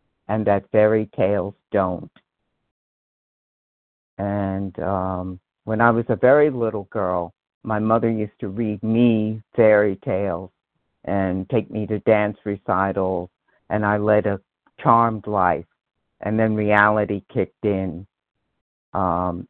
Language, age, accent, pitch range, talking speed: English, 50-69, American, 95-110 Hz, 125 wpm